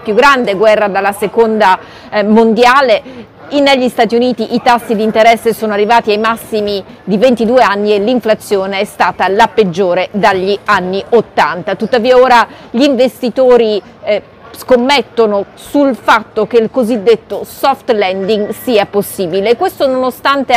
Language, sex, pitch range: Italian, female, 200-245 Hz